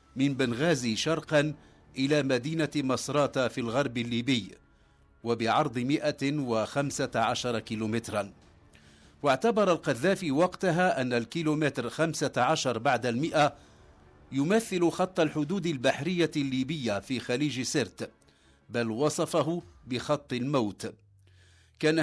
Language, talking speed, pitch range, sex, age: English, 100 wpm, 125-165 Hz, male, 50-69